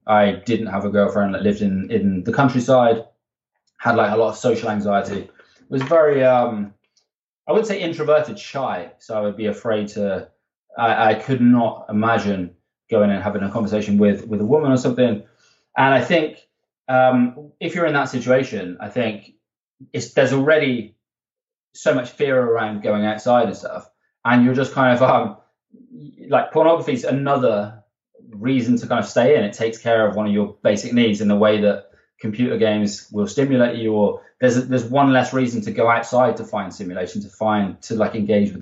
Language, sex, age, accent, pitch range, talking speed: English, male, 20-39, British, 105-125 Hz, 190 wpm